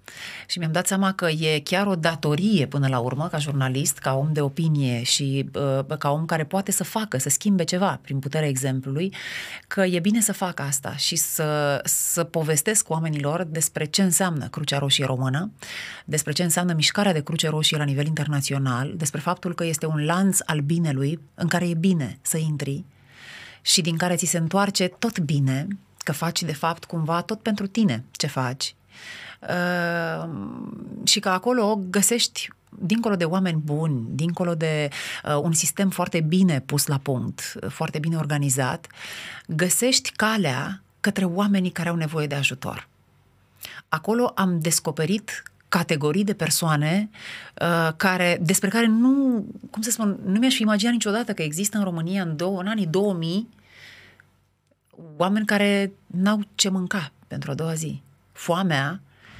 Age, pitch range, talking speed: 30-49, 150-195 Hz, 160 wpm